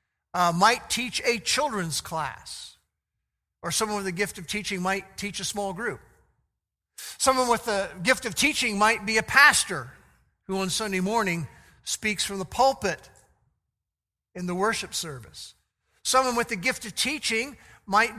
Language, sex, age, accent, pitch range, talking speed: English, male, 50-69, American, 185-240 Hz, 155 wpm